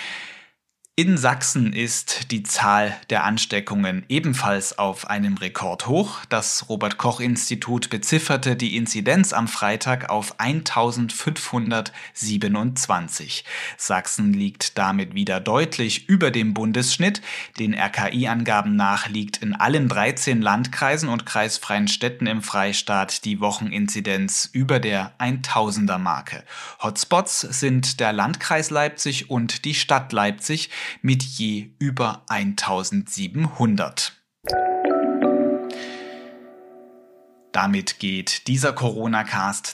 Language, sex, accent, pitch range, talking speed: German, male, German, 105-145 Hz, 95 wpm